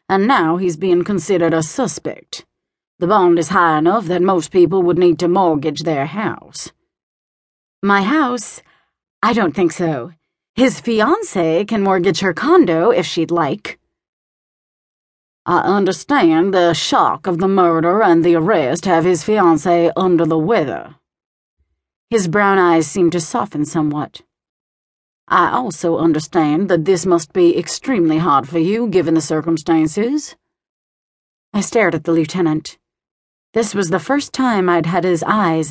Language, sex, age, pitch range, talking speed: English, female, 40-59, 165-210 Hz, 145 wpm